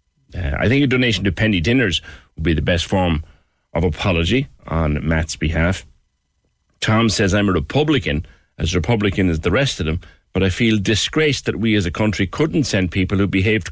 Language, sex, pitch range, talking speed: English, male, 80-110 Hz, 190 wpm